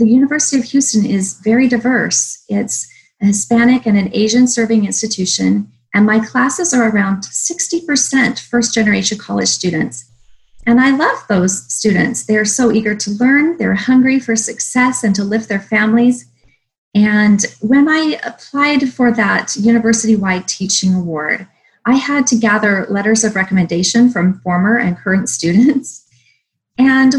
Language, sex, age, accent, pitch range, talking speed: English, female, 30-49, American, 190-250 Hz, 140 wpm